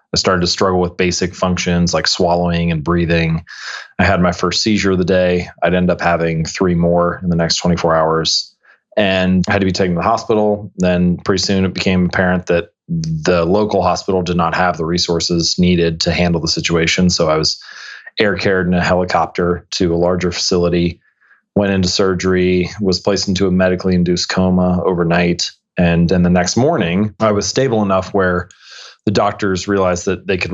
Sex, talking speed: male, 190 wpm